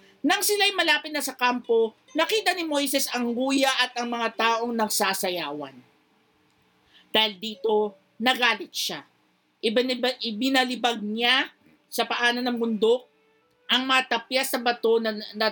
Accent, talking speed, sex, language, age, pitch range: native, 120 wpm, male, Filipino, 50-69, 215-280 Hz